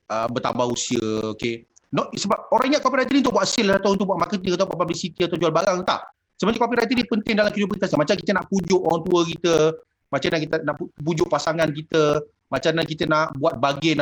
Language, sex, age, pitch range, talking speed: Malay, male, 30-49, 160-235 Hz, 210 wpm